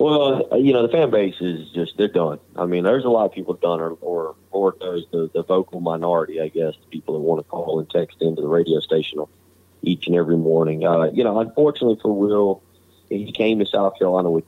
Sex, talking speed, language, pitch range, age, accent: male, 220 wpm, English, 85-105 Hz, 30-49, American